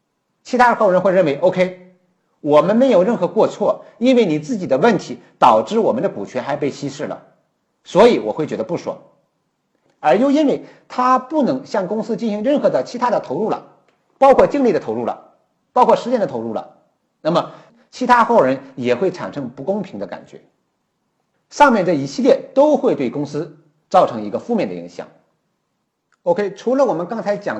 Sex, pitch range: male, 155-255 Hz